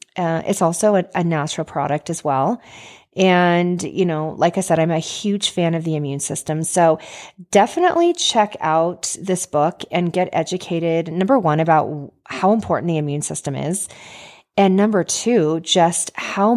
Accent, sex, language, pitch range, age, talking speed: American, female, English, 155-200 Hz, 30-49, 165 wpm